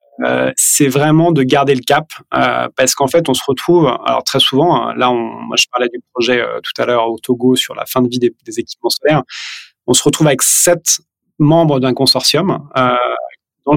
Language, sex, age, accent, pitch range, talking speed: French, male, 30-49, French, 130-150 Hz, 215 wpm